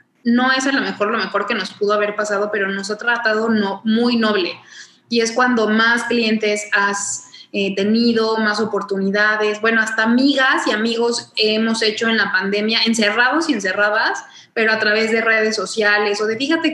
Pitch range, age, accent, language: 210-240 Hz, 20-39, Mexican, Spanish